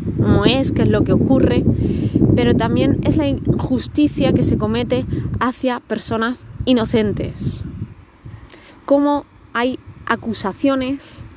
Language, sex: Spanish, female